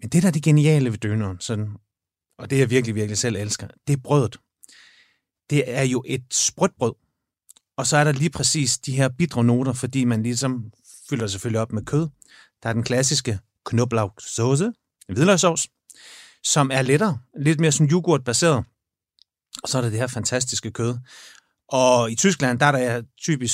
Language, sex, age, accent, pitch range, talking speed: Danish, male, 30-49, native, 110-140 Hz, 180 wpm